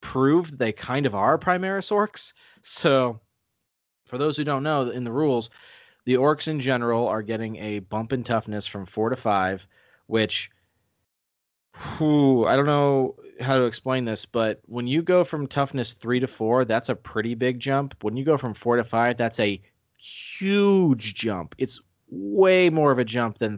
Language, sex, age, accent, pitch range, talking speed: English, male, 30-49, American, 110-135 Hz, 180 wpm